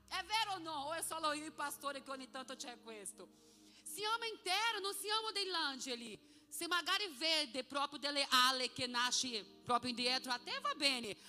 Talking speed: 195 wpm